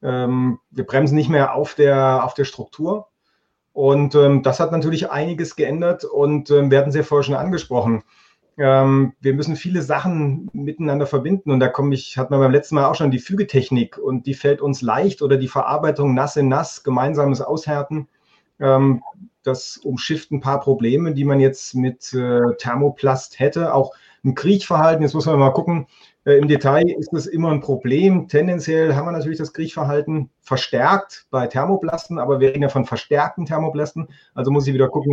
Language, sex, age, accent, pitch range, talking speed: German, male, 40-59, German, 130-155 Hz, 185 wpm